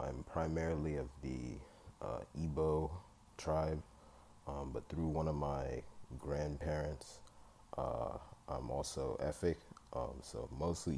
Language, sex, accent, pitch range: English, male, American, 70-80 Hz